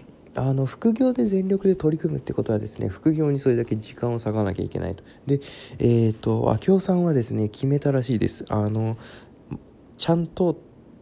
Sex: male